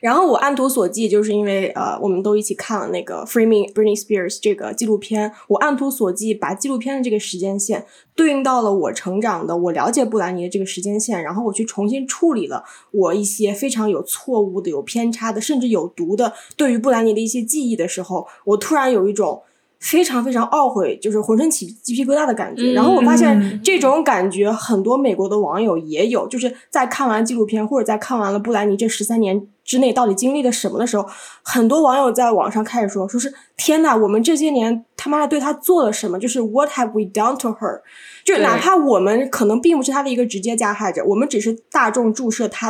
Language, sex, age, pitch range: Chinese, female, 10-29, 200-255 Hz